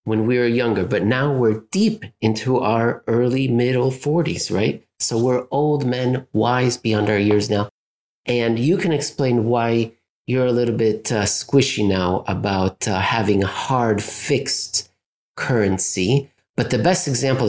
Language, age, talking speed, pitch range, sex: English, 30-49, 160 wpm, 110-135 Hz, male